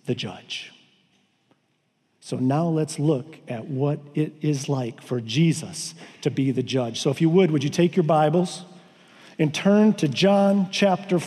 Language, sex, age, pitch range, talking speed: English, male, 50-69, 175-215 Hz, 165 wpm